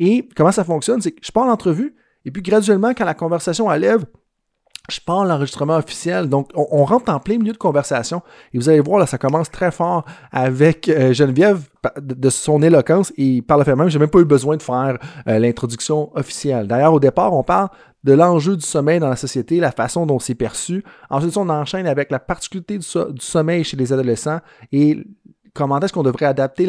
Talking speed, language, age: 215 wpm, French, 30-49